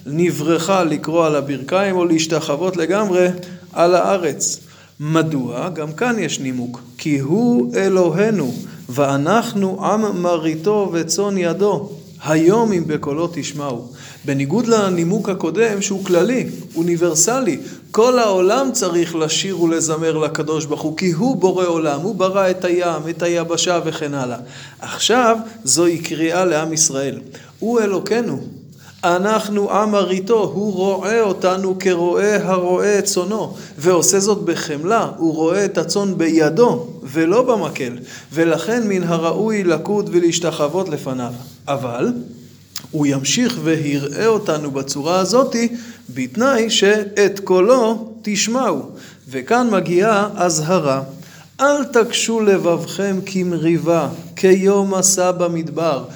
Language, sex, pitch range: Hebrew, male, 160-200 Hz